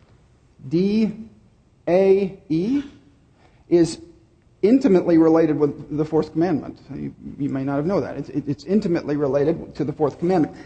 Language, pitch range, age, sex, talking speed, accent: English, 135-185 Hz, 50-69, male, 130 wpm, American